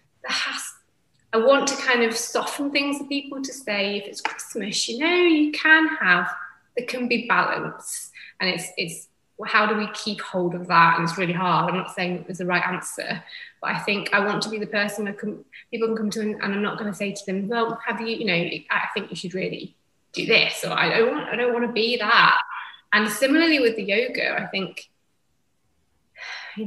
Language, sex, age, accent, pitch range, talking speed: English, female, 20-39, British, 190-250 Hz, 220 wpm